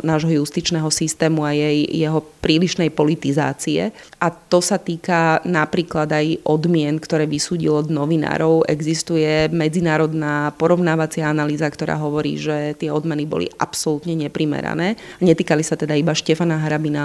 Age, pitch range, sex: 30-49, 150-165 Hz, female